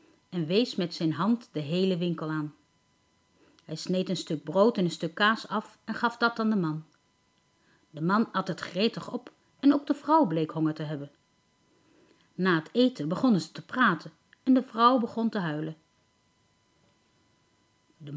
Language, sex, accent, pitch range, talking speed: Dutch, female, Dutch, 170-250 Hz, 175 wpm